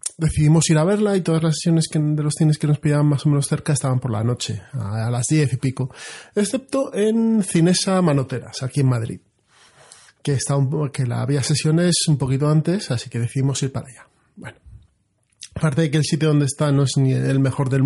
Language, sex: Spanish, male